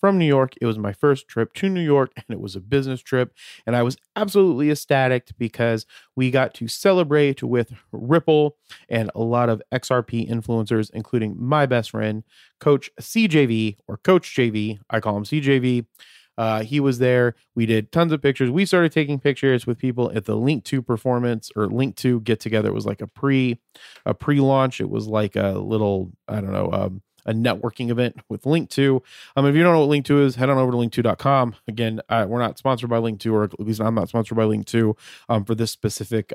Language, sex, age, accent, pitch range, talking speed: English, male, 30-49, American, 110-135 Hz, 220 wpm